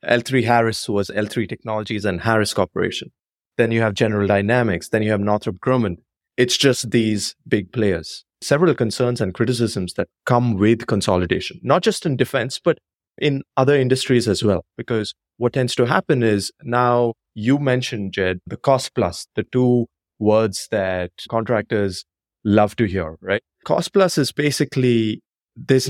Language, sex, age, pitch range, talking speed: English, male, 30-49, 105-135 Hz, 160 wpm